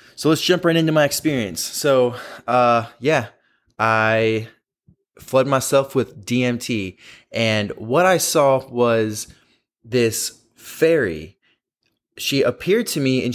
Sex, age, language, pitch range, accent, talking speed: male, 20-39, English, 110-140 Hz, American, 120 wpm